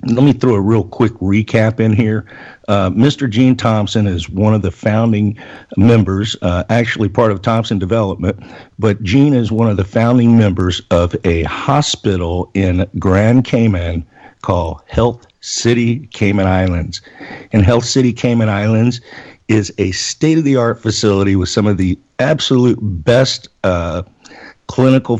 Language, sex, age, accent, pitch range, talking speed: English, male, 50-69, American, 95-120 Hz, 145 wpm